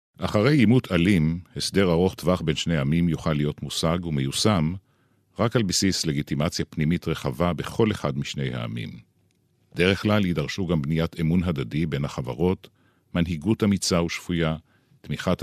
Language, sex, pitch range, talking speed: Hebrew, male, 75-105 Hz, 140 wpm